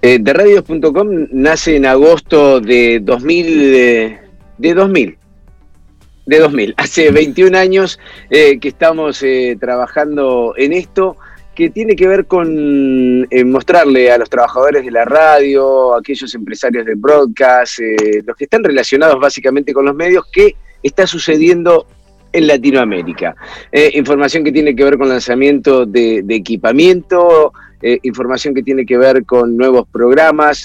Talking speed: 145 wpm